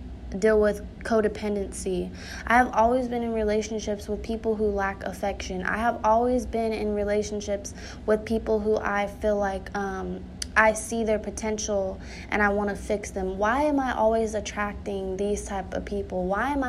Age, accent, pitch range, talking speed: 20-39, American, 200-225 Hz, 175 wpm